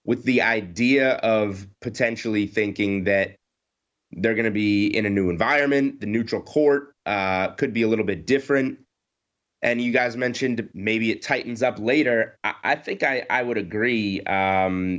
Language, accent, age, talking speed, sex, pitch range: English, American, 20-39, 165 wpm, male, 100-115 Hz